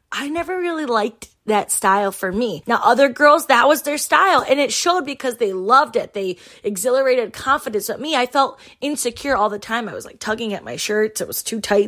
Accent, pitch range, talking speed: American, 195-275 Hz, 220 wpm